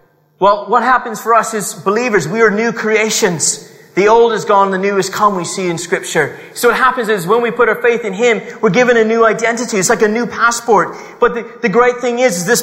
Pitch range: 220-255 Hz